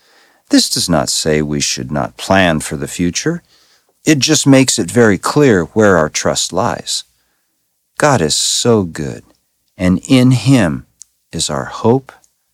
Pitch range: 70-100 Hz